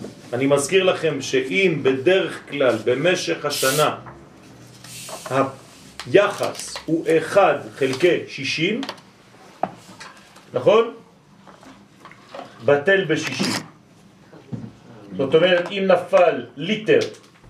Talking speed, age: 70 wpm, 40-59